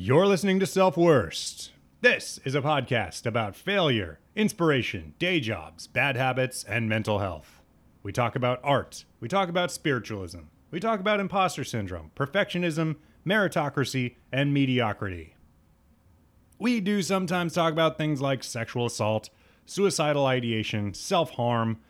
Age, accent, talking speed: 30-49, American, 130 wpm